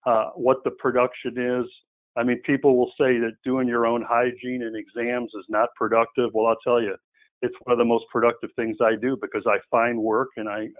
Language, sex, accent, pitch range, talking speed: English, male, American, 115-150 Hz, 215 wpm